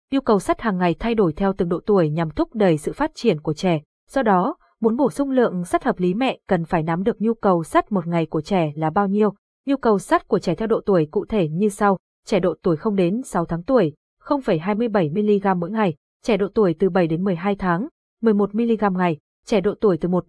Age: 20-39